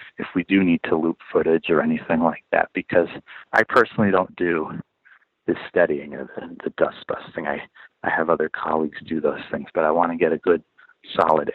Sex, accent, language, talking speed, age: male, American, English, 205 wpm, 40-59